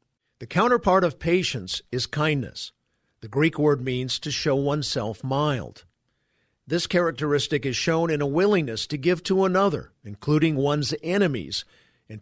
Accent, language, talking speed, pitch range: American, English, 140 wpm, 130-170 Hz